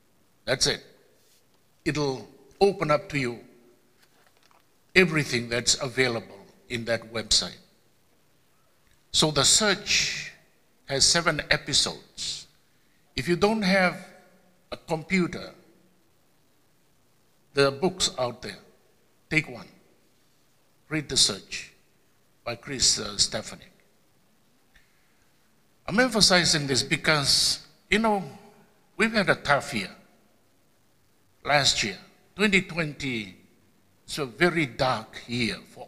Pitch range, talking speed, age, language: 135-190 Hz, 95 wpm, 60-79, English